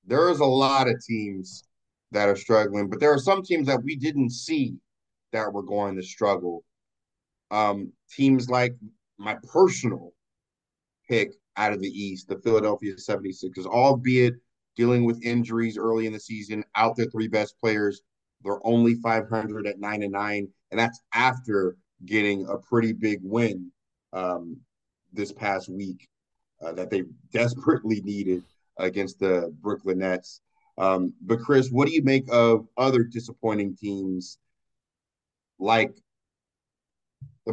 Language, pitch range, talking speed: English, 100-125 Hz, 145 wpm